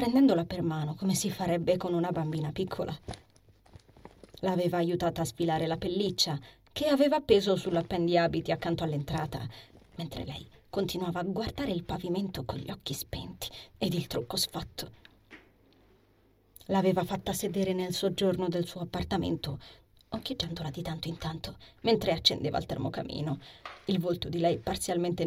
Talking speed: 140 wpm